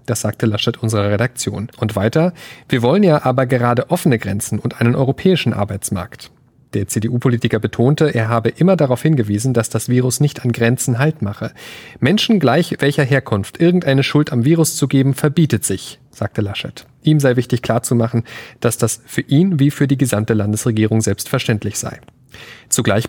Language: German